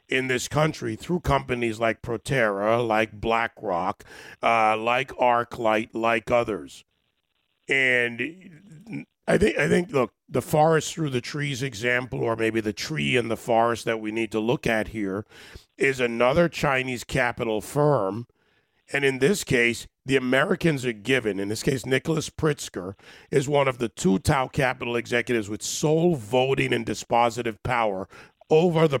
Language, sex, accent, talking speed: English, male, American, 150 wpm